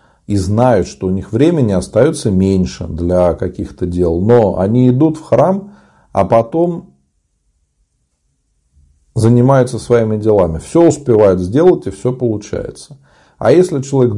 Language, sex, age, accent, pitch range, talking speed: Russian, male, 40-59, native, 95-130 Hz, 125 wpm